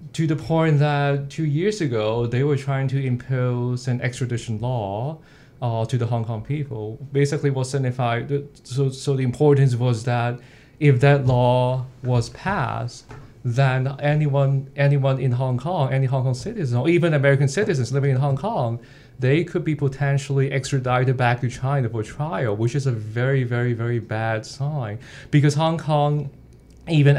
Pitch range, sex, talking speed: 120-140 Hz, male, 170 wpm